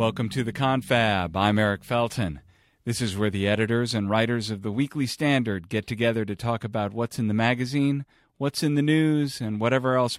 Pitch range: 115-145 Hz